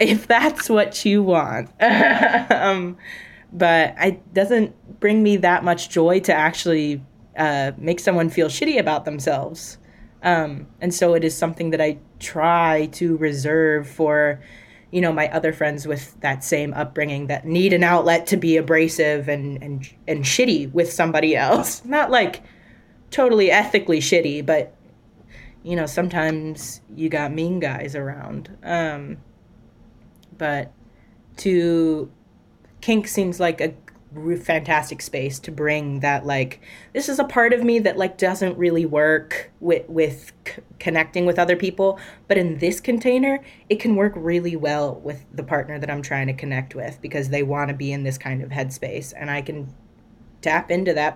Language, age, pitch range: English, 20-39, 145-180 Hz